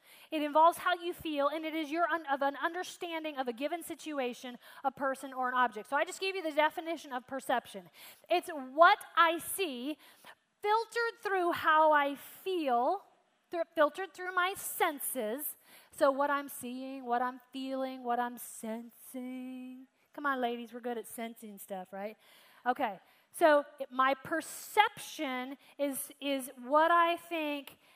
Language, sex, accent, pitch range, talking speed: English, female, American, 255-330 Hz, 160 wpm